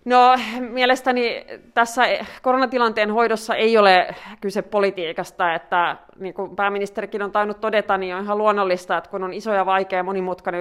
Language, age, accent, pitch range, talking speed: Finnish, 30-49, native, 180-220 Hz, 160 wpm